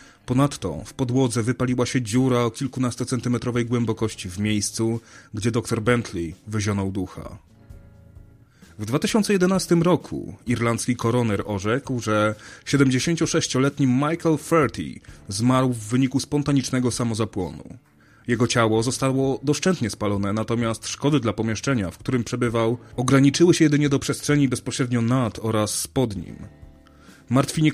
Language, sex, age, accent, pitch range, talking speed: Polish, male, 30-49, native, 110-145 Hz, 115 wpm